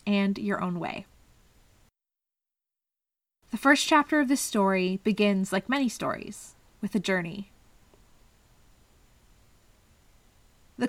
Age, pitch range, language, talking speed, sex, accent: 20-39, 165-225 Hz, English, 100 wpm, female, American